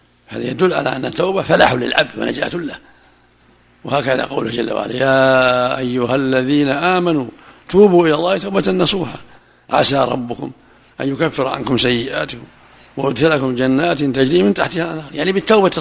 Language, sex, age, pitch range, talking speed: Arabic, male, 60-79, 125-150 Hz, 135 wpm